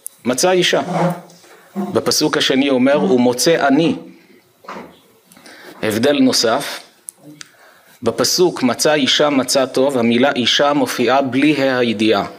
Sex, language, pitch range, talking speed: male, Hebrew, 120-165 Hz, 100 wpm